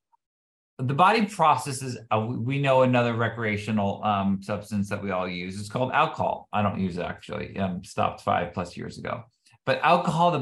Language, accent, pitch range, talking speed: English, American, 100-115 Hz, 180 wpm